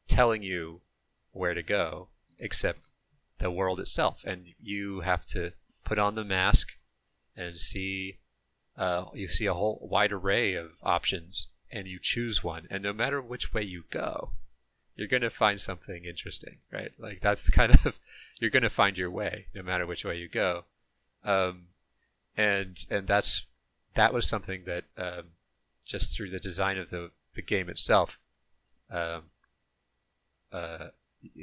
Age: 30-49